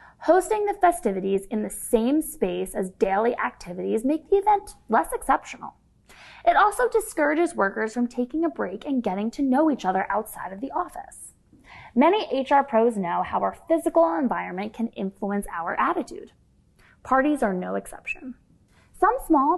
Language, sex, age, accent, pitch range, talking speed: English, female, 20-39, American, 205-315 Hz, 155 wpm